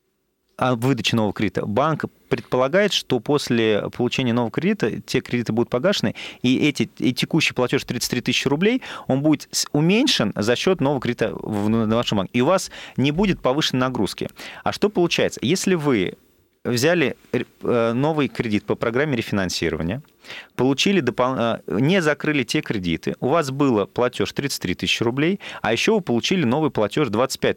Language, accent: Russian, native